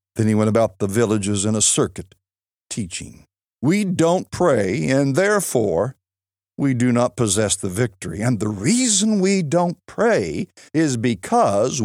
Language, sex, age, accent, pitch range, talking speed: English, male, 60-79, American, 100-155 Hz, 145 wpm